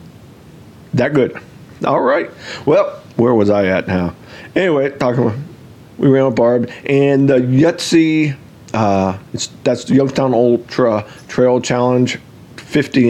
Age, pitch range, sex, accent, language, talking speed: 50-69, 110-130 Hz, male, American, English, 130 wpm